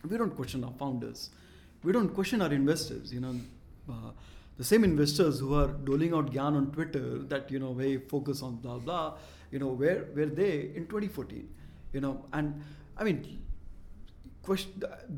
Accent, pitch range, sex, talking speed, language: Indian, 125-155 Hz, male, 175 wpm, English